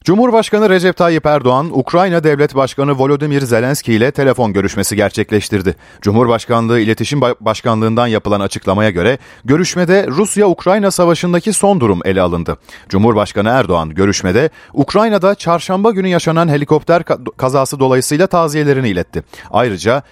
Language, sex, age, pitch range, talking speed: Turkish, male, 40-59, 110-180 Hz, 115 wpm